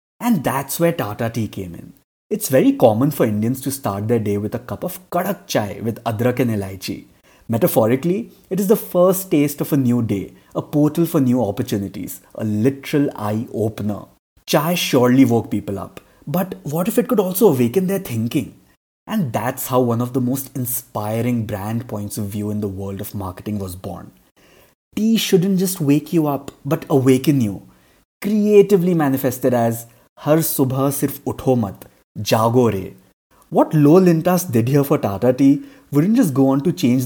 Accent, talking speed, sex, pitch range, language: Indian, 180 wpm, male, 115-170 Hz, English